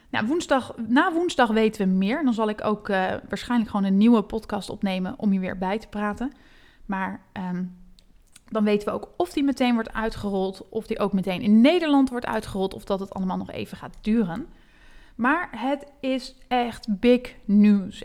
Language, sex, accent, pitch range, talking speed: Dutch, female, Dutch, 195-240 Hz, 190 wpm